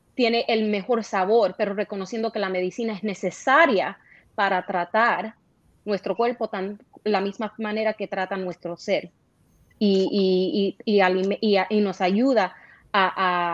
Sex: female